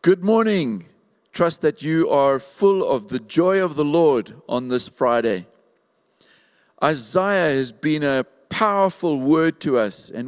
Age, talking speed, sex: 50-69, 145 wpm, male